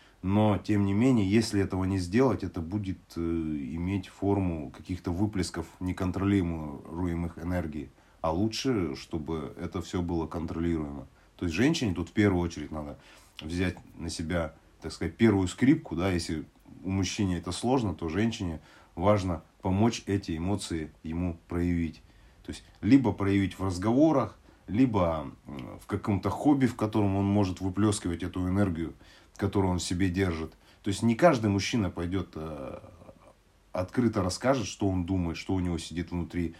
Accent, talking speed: native, 150 wpm